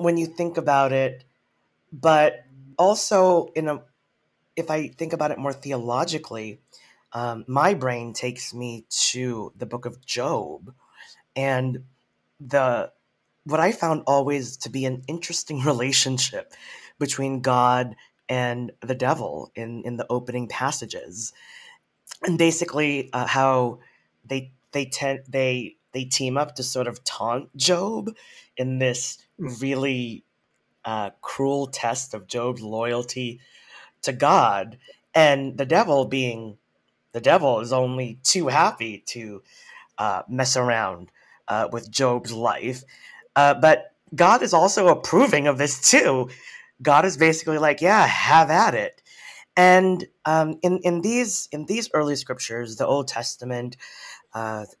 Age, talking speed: 30-49, 135 wpm